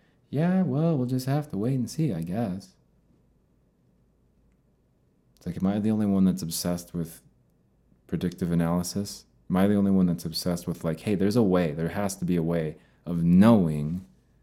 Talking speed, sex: 185 wpm, male